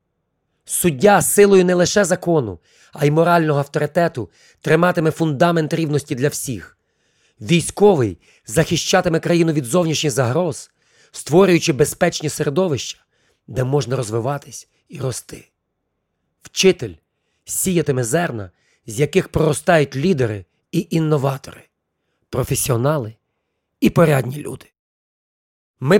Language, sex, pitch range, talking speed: Ukrainian, male, 125-175 Hz, 95 wpm